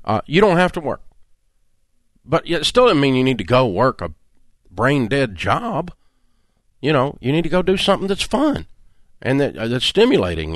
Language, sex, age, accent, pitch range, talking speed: English, male, 50-69, American, 110-155 Hz, 190 wpm